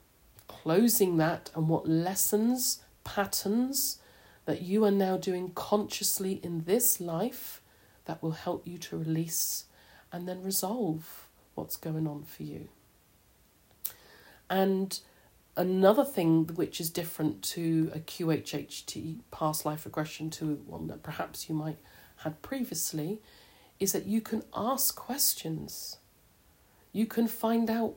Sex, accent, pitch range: female, British, 155-205 Hz